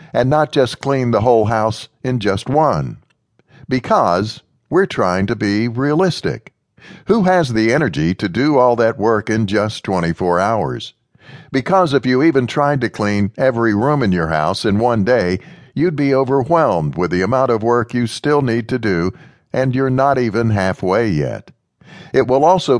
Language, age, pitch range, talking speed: English, 60-79, 110-145 Hz, 175 wpm